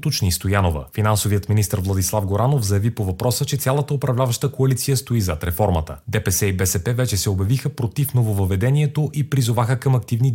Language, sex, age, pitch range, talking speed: Bulgarian, male, 30-49, 105-135 Hz, 160 wpm